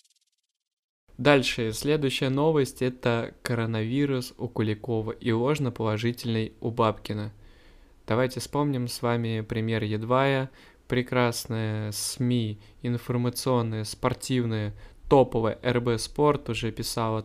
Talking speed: 90 wpm